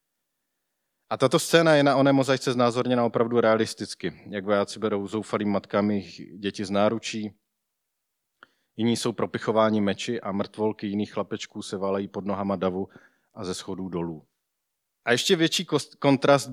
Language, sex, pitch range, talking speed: Czech, male, 105-120 Hz, 140 wpm